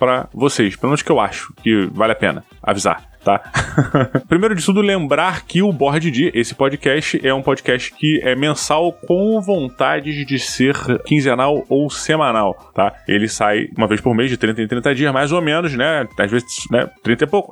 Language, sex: Portuguese, male